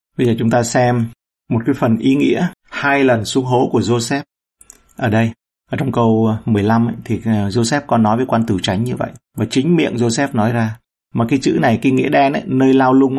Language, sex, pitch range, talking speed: Vietnamese, male, 110-135 Hz, 230 wpm